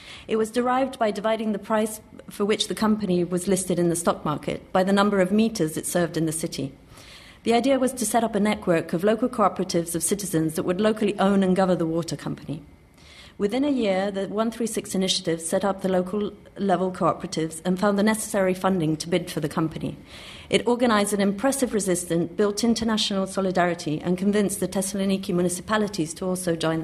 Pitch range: 170-210 Hz